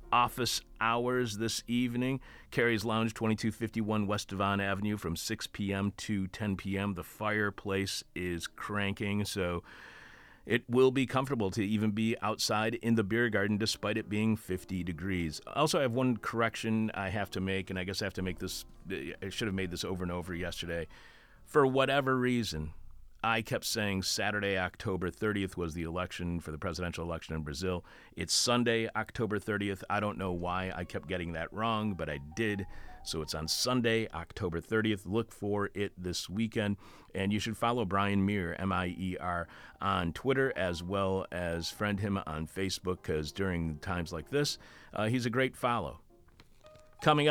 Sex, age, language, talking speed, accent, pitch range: male, 40-59, English, 175 wpm, American, 90-110 Hz